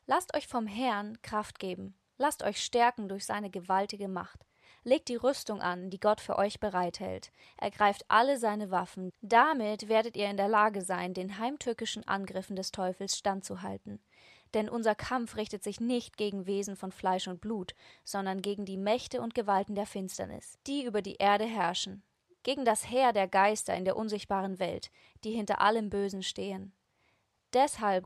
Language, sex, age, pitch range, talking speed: Portuguese, female, 20-39, 195-225 Hz, 170 wpm